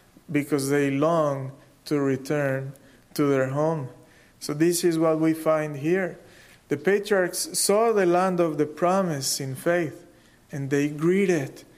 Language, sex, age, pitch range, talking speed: English, male, 40-59, 145-175 Hz, 145 wpm